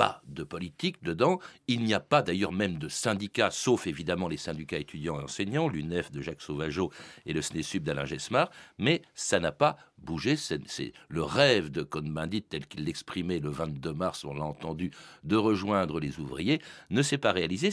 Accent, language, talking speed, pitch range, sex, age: French, French, 185 wpm, 105-145 Hz, male, 60-79